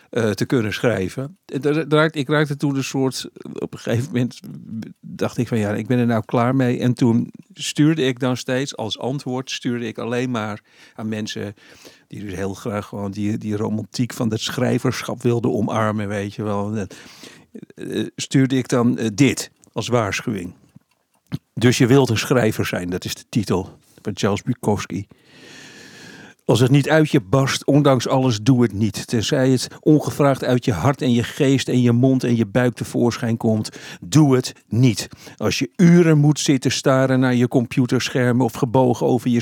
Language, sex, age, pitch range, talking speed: Dutch, male, 50-69, 115-140 Hz, 175 wpm